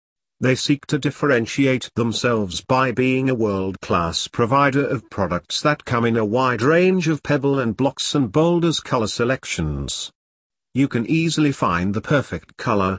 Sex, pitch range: male, 110-140 Hz